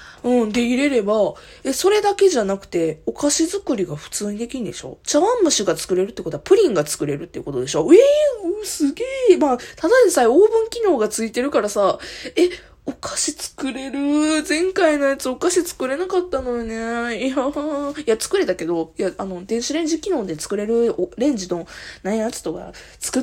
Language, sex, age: Japanese, female, 20-39